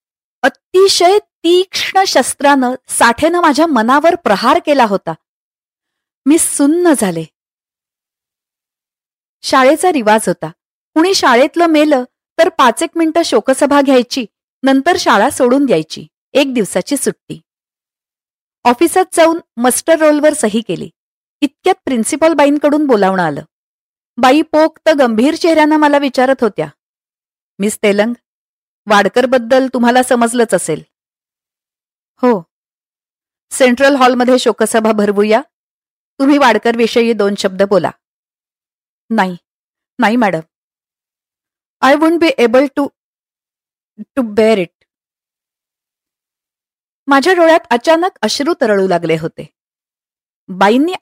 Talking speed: 100 wpm